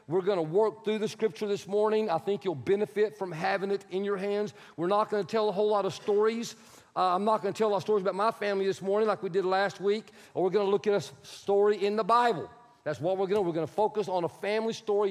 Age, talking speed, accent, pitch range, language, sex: 40-59, 290 wpm, American, 175-210 Hz, English, male